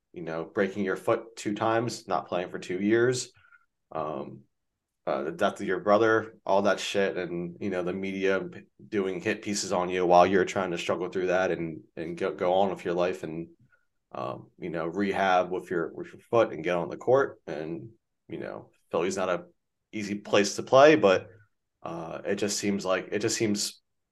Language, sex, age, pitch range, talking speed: English, male, 30-49, 95-110 Hz, 205 wpm